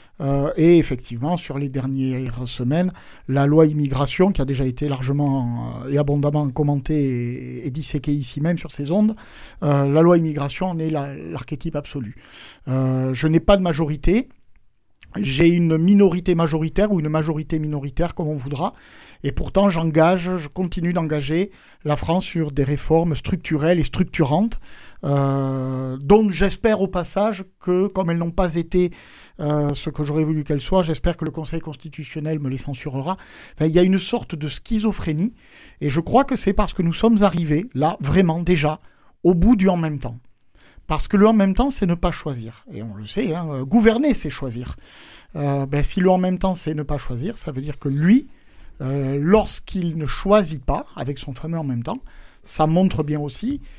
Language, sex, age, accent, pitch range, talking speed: French, male, 50-69, French, 145-185 Hz, 195 wpm